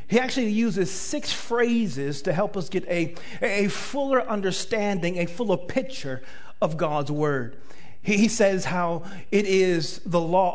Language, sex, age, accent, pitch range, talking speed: English, male, 40-59, American, 155-205 Hz, 150 wpm